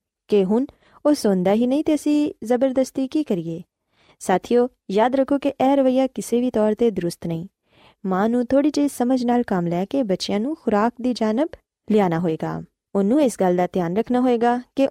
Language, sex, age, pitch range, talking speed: Punjabi, female, 20-39, 190-265 Hz, 180 wpm